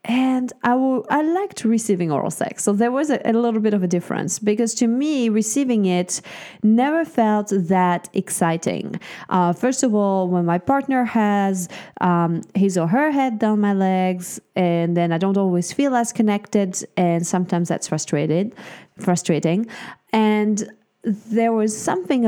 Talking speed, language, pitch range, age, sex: 160 wpm, English, 170-210 Hz, 30-49, female